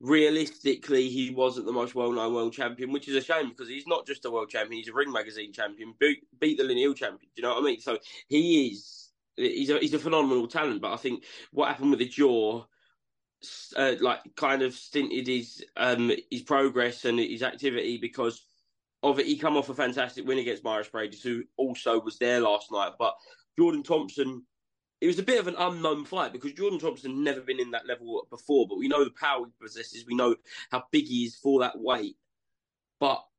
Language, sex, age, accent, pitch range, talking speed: English, male, 20-39, British, 125-160 Hz, 215 wpm